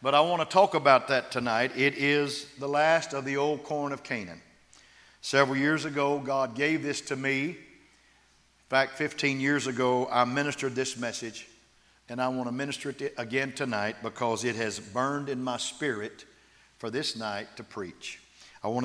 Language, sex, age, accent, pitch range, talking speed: English, male, 50-69, American, 115-140 Hz, 180 wpm